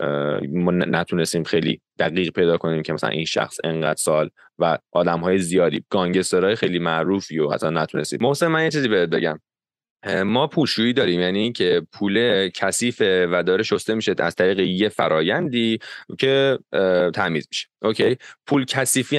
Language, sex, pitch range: English, male, 90-140 Hz